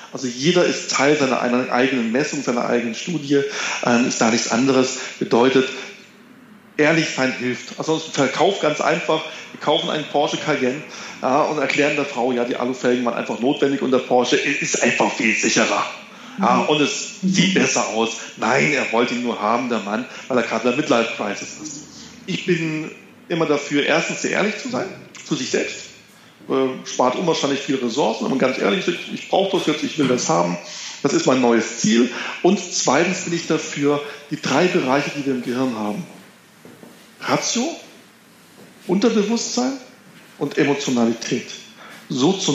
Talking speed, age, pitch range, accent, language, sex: 165 wpm, 40-59, 125-170 Hz, German, German, male